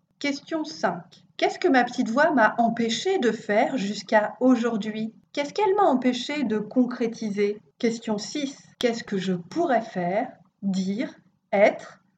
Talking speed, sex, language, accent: 140 wpm, female, French, French